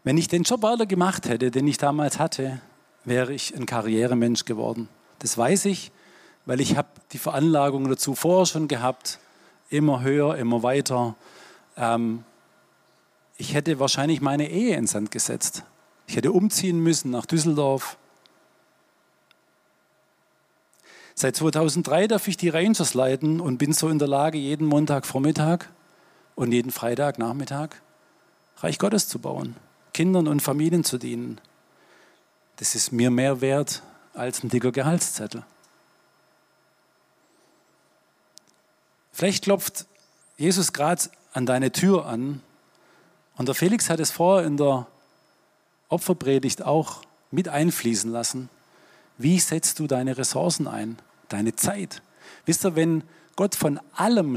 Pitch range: 130-170 Hz